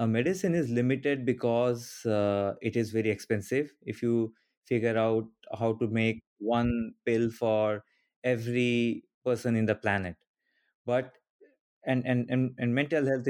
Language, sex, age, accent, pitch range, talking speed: English, male, 20-39, Indian, 110-125 Hz, 145 wpm